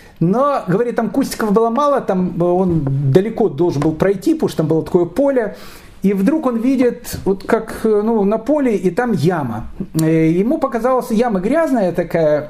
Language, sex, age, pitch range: Russian, male, 40-59, 160-225 Hz